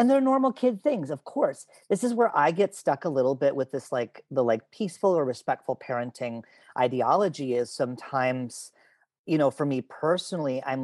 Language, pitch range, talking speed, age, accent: English, 130-185 Hz, 190 wpm, 40-59, American